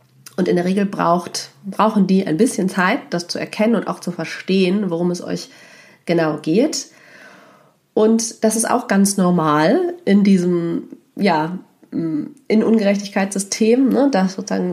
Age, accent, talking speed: 40-59, German, 140 wpm